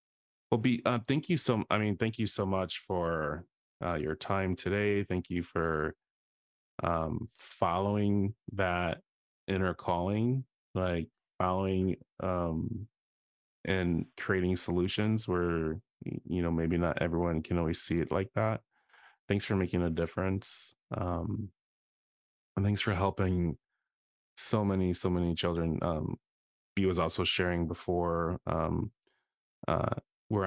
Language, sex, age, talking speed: English, male, 20-39, 130 wpm